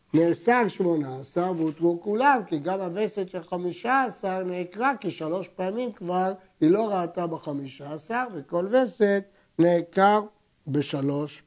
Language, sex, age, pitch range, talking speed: Hebrew, male, 60-79, 165-220 Hz, 120 wpm